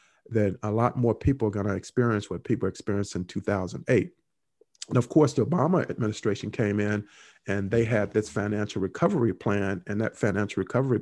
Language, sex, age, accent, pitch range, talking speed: English, male, 50-69, American, 105-125 Hz, 175 wpm